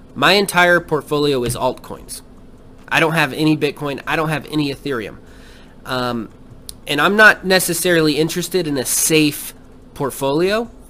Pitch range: 125-175 Hz